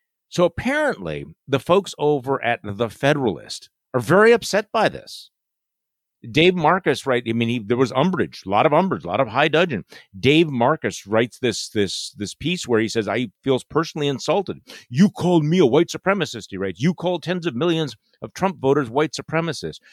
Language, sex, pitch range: English, male, 105-165 Hz